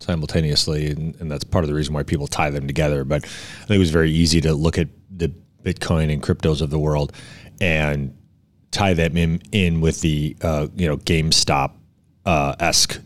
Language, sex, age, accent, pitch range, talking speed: English, male, 30-49, American, 70-85 Hz, 190 wpm